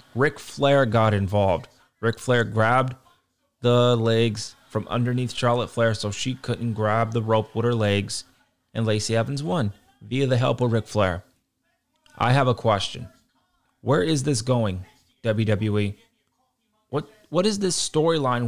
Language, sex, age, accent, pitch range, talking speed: English, male, 20-39, American, 110-140 Hz, 150 wpm